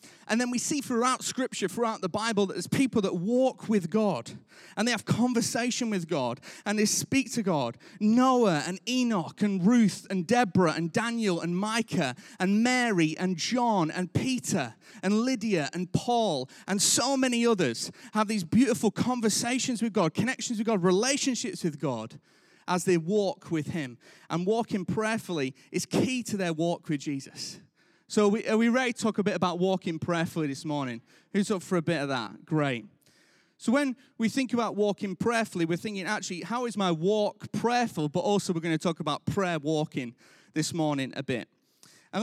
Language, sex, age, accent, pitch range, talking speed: English, male, 30-49, British, 165-230 Hz, 185 wpm